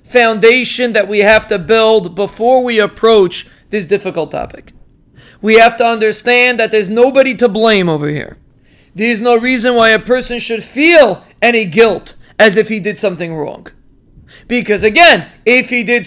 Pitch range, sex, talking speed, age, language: 210-245 Hz, male, 165 wpm, 40-59, English